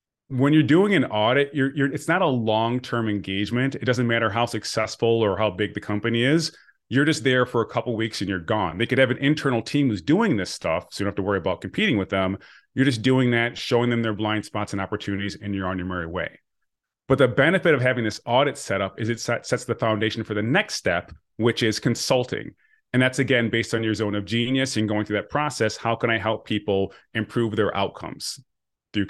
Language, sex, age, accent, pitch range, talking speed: English, male, 30-49, American, 105-135 Hz, 235 wpm